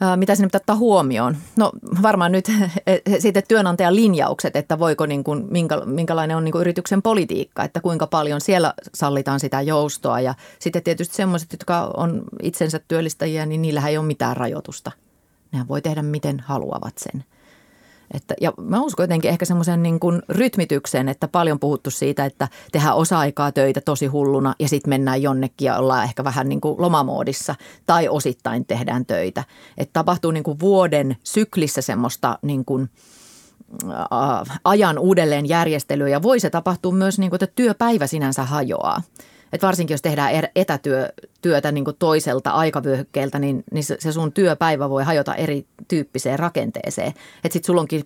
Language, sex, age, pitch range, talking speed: Finnish, female, 30-49, 140-180 Hz, 160 wpm